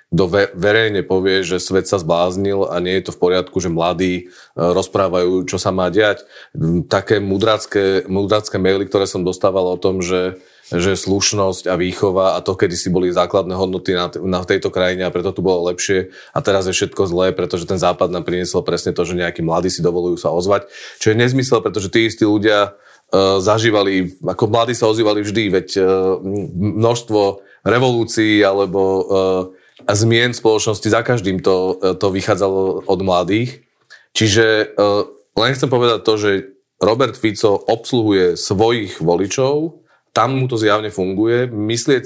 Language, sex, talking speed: Slovak, male, 165 wpm